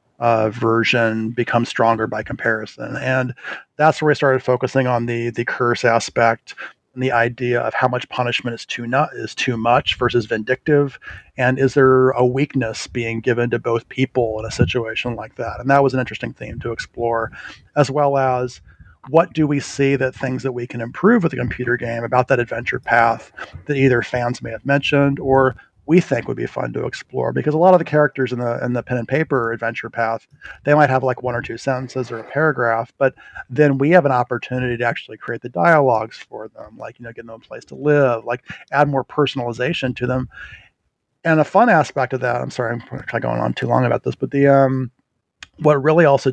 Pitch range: 115-135 Hz